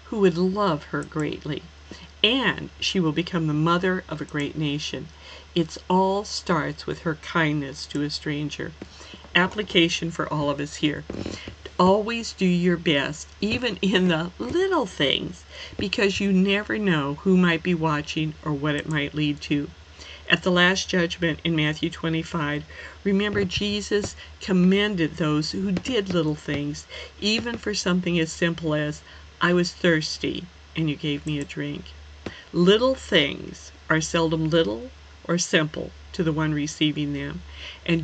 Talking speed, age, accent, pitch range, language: 150 wpm, 50-69, American, 150-185 Hz, English